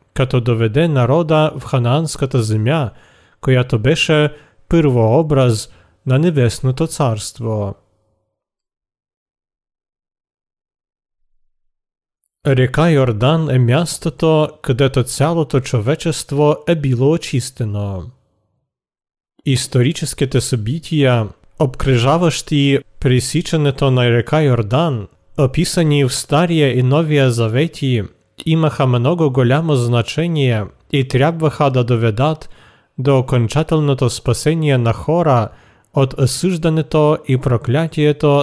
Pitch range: 120-150 Hz